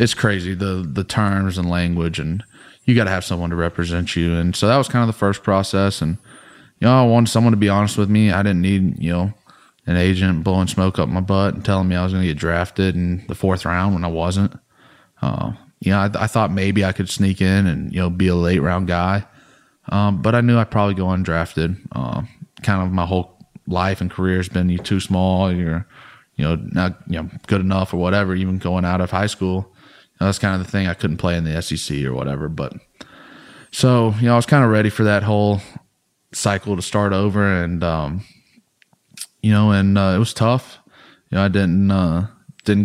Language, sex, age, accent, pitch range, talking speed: English, male, 20-39, American, 90-105 Hz, 230 wpm